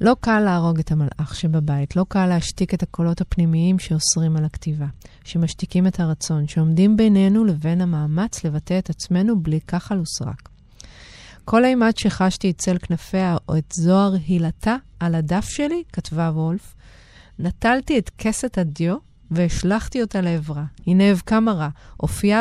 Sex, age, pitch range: female, 30-49, 160-195 Hz